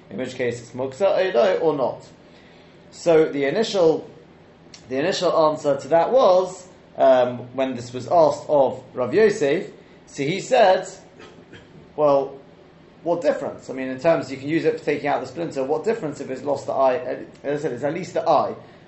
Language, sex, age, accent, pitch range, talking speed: English, male, 30-49, British, 130-180 Hz, 190 wpm